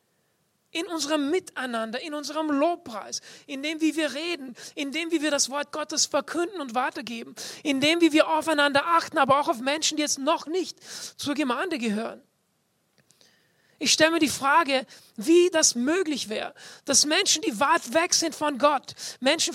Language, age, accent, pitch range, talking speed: English, 40-59, German, 265-315 Hz, 170 wpm